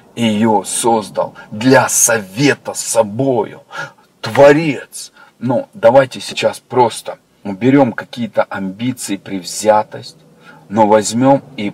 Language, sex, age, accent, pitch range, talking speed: Russian, male, 40-59, native, 120-155 Hz, 90 wpm